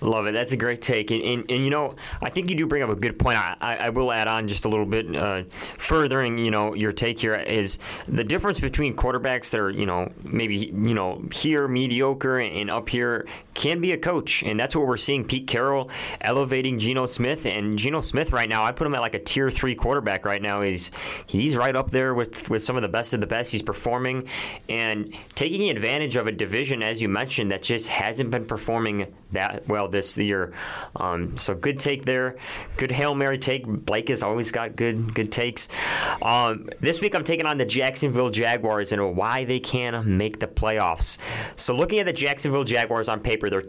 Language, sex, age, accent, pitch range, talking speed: English, male, 20-39, American, 105-130 Hz, 215 wpm